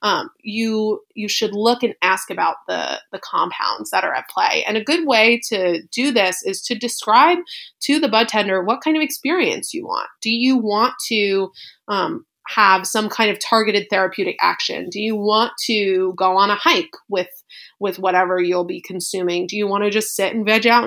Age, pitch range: 20-39, 195-250 Hz